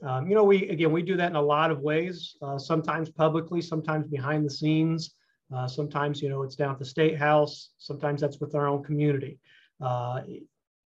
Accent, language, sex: American, English, male